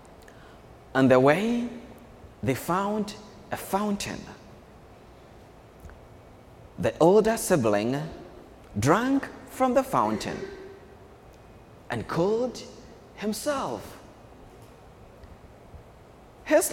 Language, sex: English, male